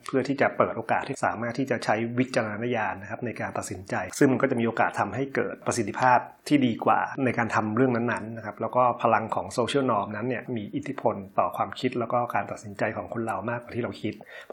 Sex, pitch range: male, 115-130 Hz